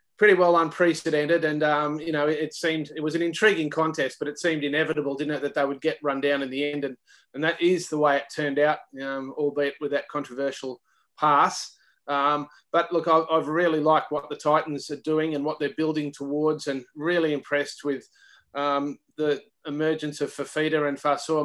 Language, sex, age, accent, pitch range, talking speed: English, male, 30-49, Australian, 140-155 Hz, 200 wpm